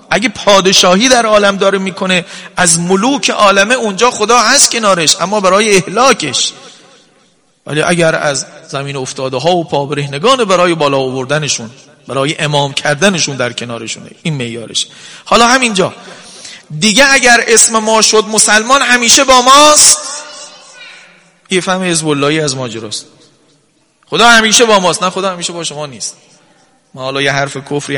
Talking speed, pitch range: 145 wpm, 140-195 Hz